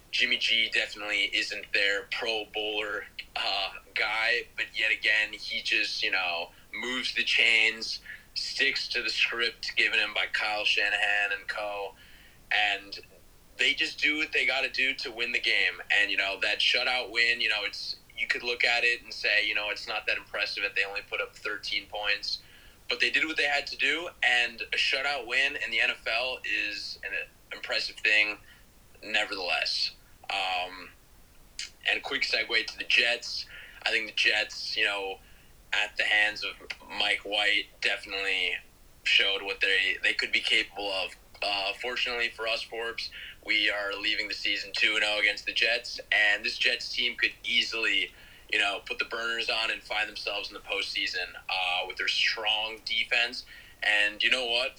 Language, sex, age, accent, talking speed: English, male, 20-39, American, 175 wpm